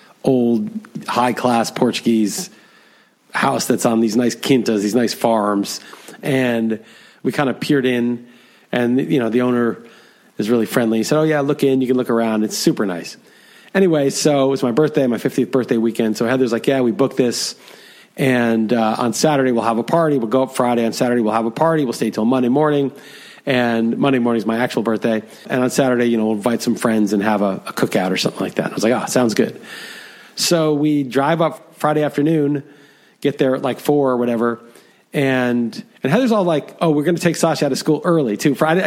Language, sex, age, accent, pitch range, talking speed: English, male, 40-59, American, 120-150 Hz, 220 wpm